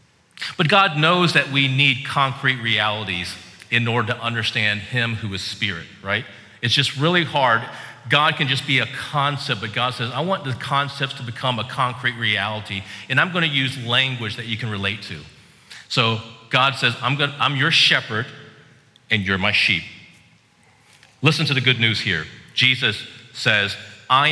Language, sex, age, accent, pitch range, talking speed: English, male, 40-59, American, 100-130 Hz, 170 wpm